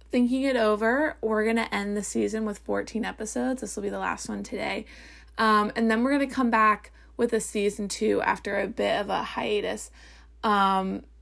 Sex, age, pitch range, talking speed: female, 20-39, 210-240 Hz, 205 wpm